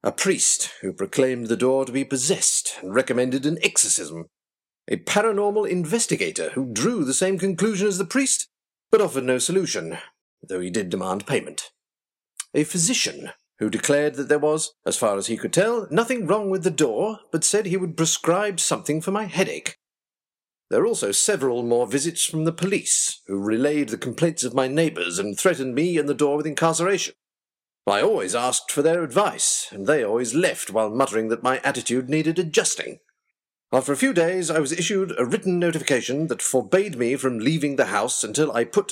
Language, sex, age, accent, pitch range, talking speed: English, male, 50-69, British, 130-185 Hz, 185 wpm